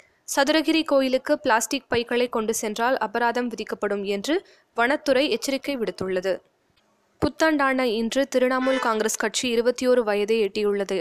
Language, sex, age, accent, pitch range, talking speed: Tamil, female, 20-39, native, 215-270 Hz, 110 wpm